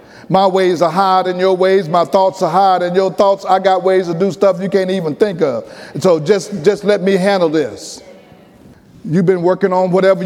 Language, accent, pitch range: English, American, 160-200 Hz